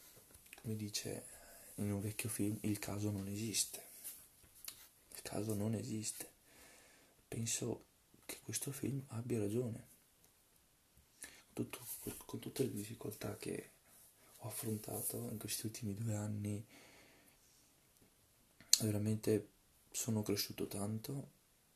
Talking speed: 100 wpm